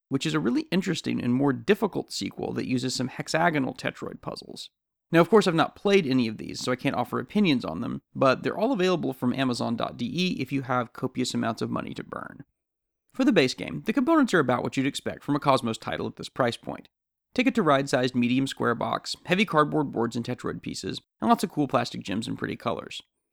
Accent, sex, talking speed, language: American, male, 225 wpm, English